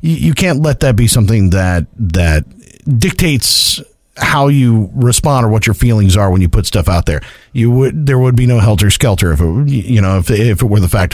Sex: male